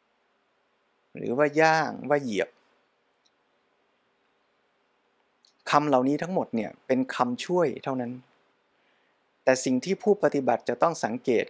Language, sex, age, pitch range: Thai, male, 20-39, 125-150 Hz